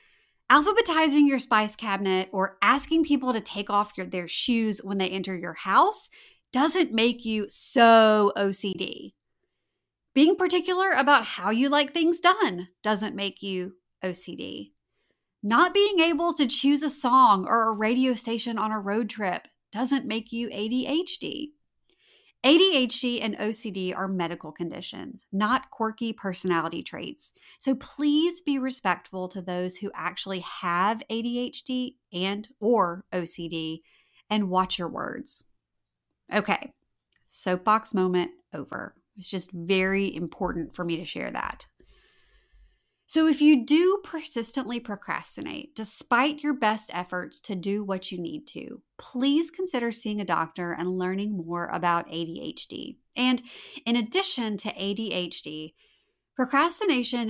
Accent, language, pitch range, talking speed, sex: American, English, 185-280 Hz, 130 wpm, female